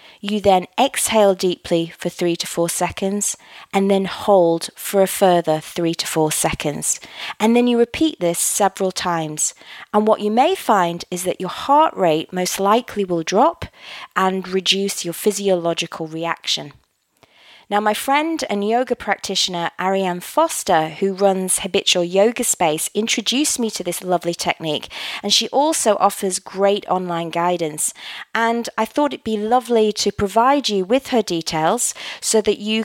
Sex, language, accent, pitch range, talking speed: female, English, British, 175-225 Hz, 155 wpm